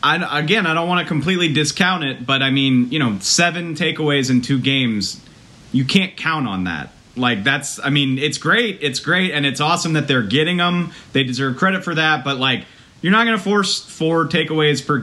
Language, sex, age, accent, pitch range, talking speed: English, male, 30-49, American, 115-145 Hz, 210 wpm